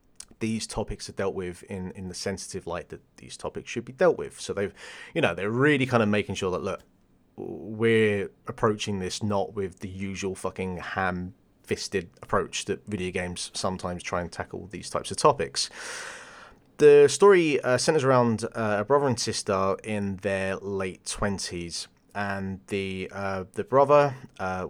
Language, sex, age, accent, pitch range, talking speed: English, male, 30-49, British, 90-120 Hz, 170 wpm